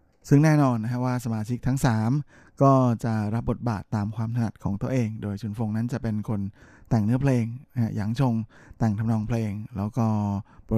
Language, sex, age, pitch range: Thai, male, 20-39, 100-120 Hz